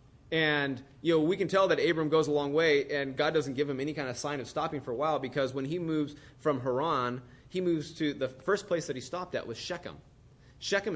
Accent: American